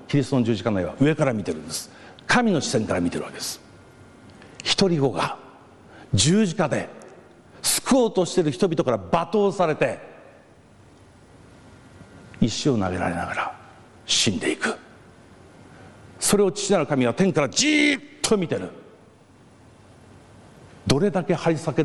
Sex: male